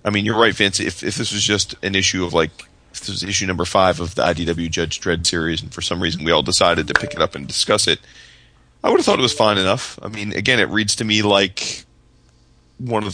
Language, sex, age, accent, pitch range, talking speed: English, male, 30-49, American, 90-105 Hz, 265 wpm